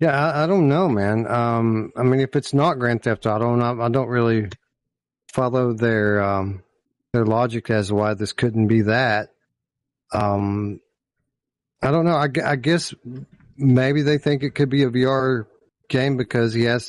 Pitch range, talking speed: 110-130 Hz, 185 wpm